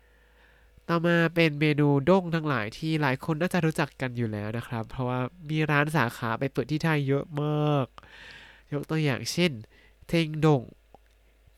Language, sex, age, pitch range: Thai, male, 20-39, 125-150 Hz